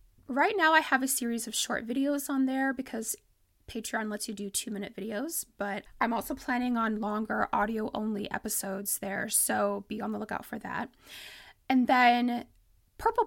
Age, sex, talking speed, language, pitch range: 20-39, female, 165 wpm, English, 215-270 Hz